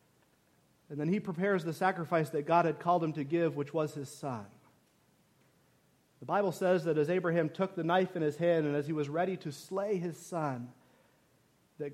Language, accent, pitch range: English, American, 185-300 Hz